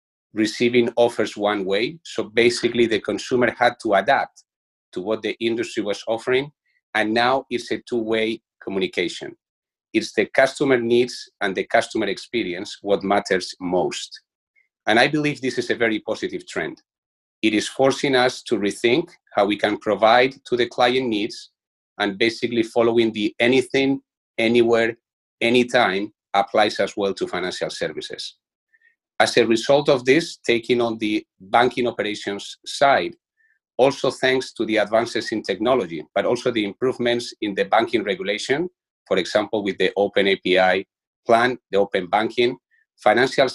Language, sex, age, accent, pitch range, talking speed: English, male, 40-59, Spanish, 115-140 Hz, 145 wpm